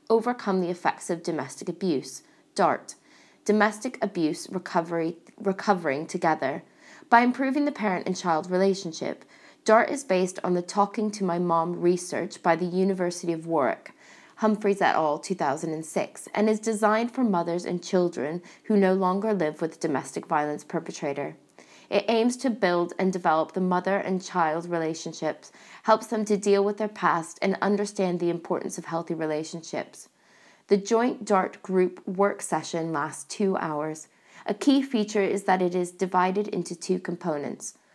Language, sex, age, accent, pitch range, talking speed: English, female, 20-39, British, 170-205 Hz, 155 wpm